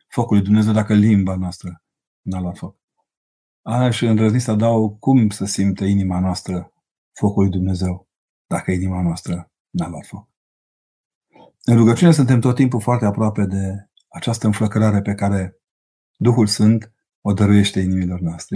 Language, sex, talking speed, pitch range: Romanian, male, 145 wpm, 100-125 Hz